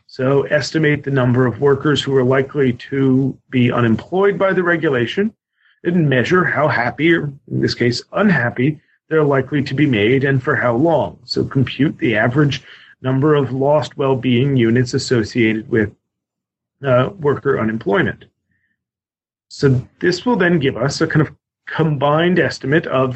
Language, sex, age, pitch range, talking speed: English, male, 40-59, 130-155 Hz, 155 wpm